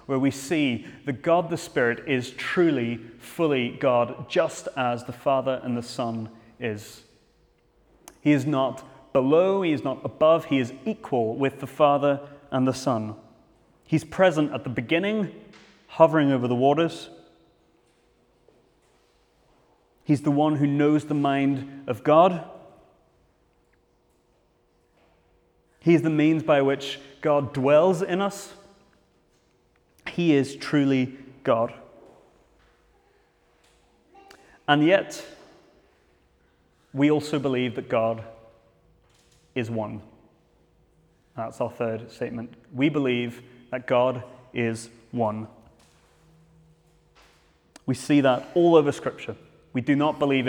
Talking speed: 115 wpm